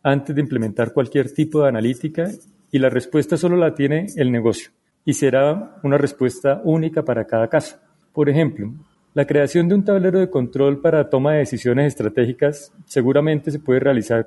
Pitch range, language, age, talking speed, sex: 125-155 Hz, Spanish, 30-49, 175 wpm, male